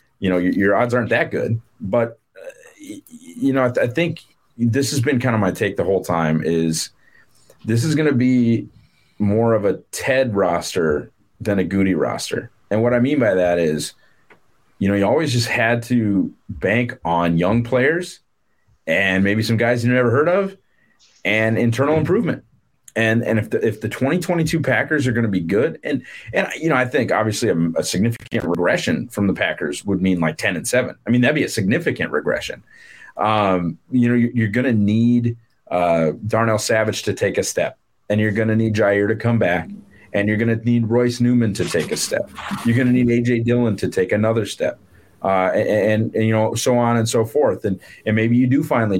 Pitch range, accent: 105-130 Hz, American